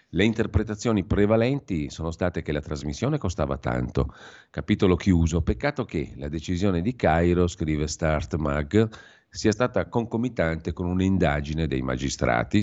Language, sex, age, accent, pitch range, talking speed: Italian, male, 50-69, native, 75-95 Hz, 130 wpm